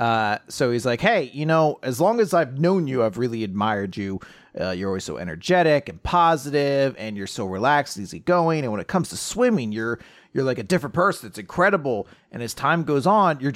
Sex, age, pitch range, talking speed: male, 30-49, 115-165 Hz, 225 wpm